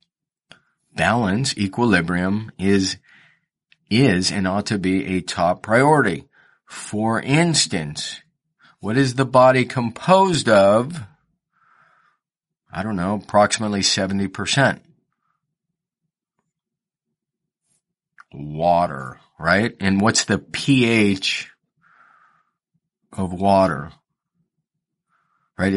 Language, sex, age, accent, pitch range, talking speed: English, male, 40-59, American, 95-150 Hz, 75 wpm